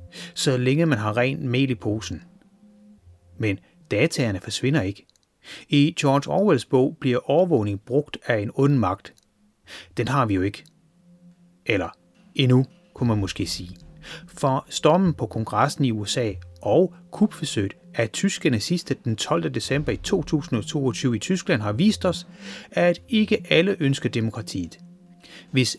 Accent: native